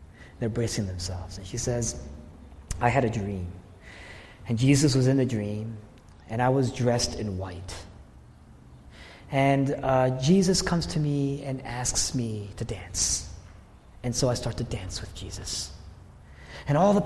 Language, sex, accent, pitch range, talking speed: English, male, American, 90-130 Hz, 155 wpm